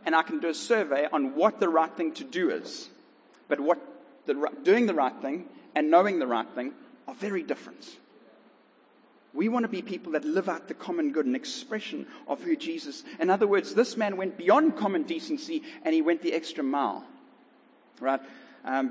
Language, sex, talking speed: English, male, 195 wpm